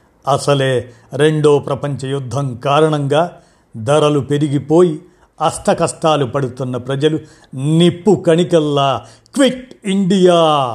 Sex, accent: male, native